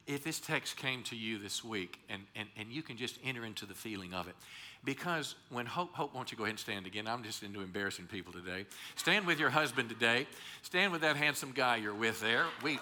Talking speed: 240 wpm